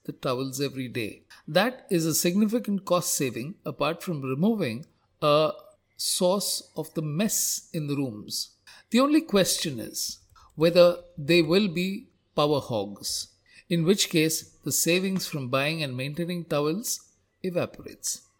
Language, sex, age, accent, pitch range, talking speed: English, male, 50-69, Indian, 140-190 Hz, 135 wpm